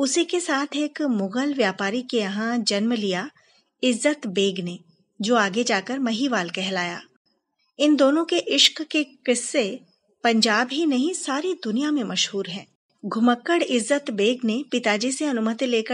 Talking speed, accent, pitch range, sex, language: 75 wpm, native, 205-285 Hz, female, Hindi